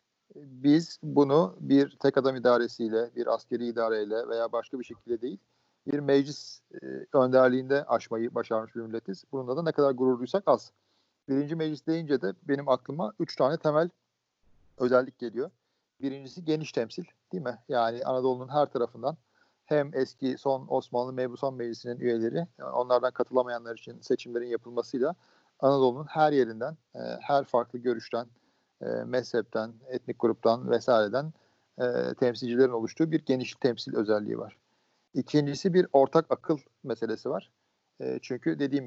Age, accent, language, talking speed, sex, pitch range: 50-69, native, Turkish, 135 wpm, male, 115-140 Hz